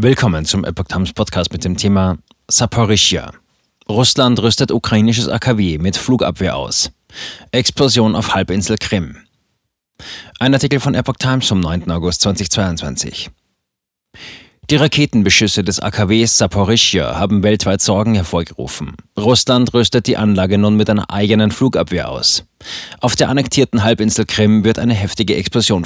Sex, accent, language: male, German, German